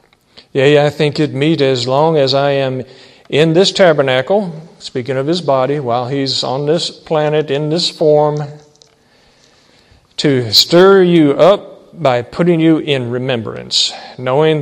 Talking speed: 145 wpm